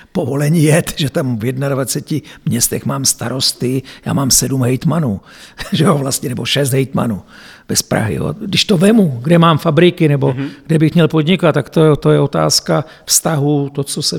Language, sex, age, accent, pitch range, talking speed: Czech, male, 60-79, native, 135-160 Hz, 160 wpm